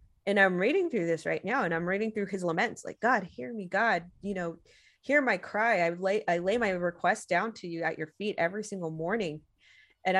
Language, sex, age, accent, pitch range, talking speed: English, female, 20-39, American, 165-220 Hz, 230 wpm